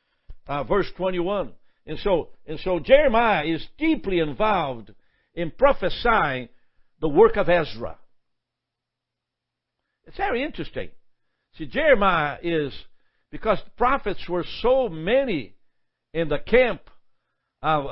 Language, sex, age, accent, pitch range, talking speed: English, male, 60-79, American, 150-205 Hz, 110 wpm